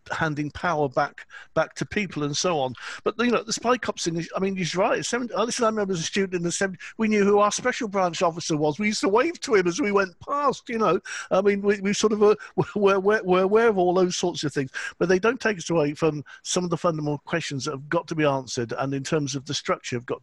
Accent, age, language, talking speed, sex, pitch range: British, 50-69, English, 275 wpm, male, 135-185 Hz